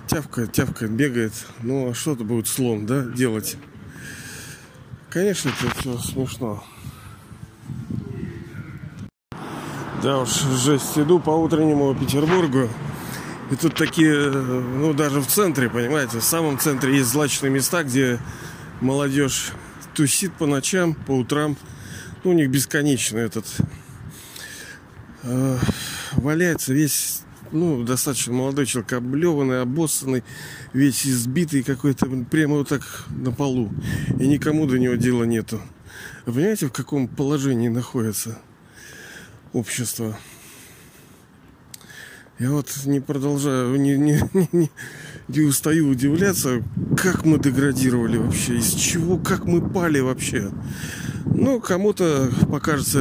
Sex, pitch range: male, 125-155 Hz